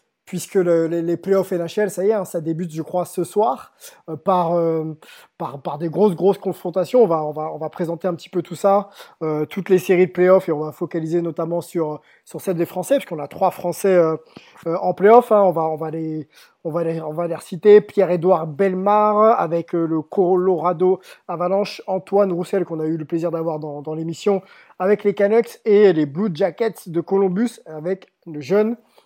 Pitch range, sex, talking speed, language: 165-200 Hz, male, 205 wpm, French